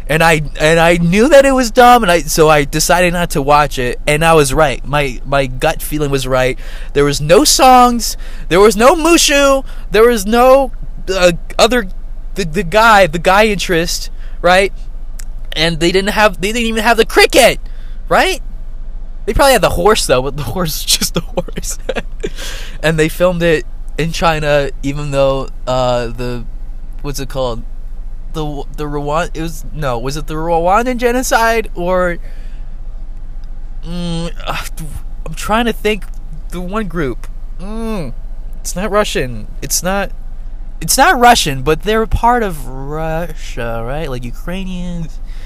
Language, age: English, 20-39